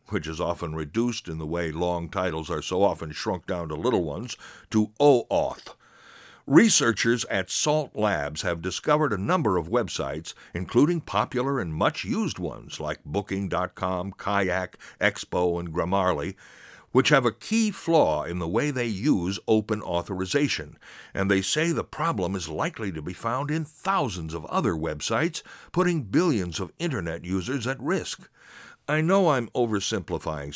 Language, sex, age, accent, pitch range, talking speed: English, male, 60-79, American, 90-135 Hz, 155 wpm